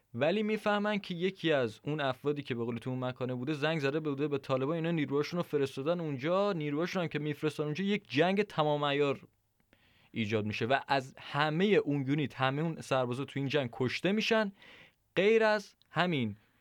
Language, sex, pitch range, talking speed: Persian, male, 125-175 Hz, 175 wpm